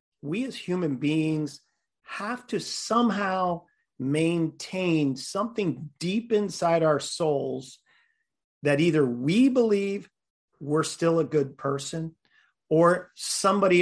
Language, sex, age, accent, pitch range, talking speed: English, male, 40-59, American, 145-180 Hz, 105 wpm